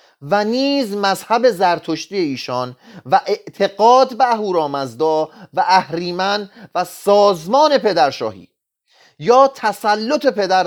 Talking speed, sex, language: 110 wpm, male, Persian